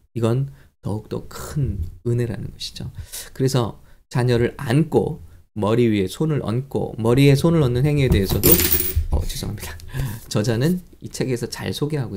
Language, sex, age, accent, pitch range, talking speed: English, male, 20-39, Korean, 95-140 Hz, 120 wpm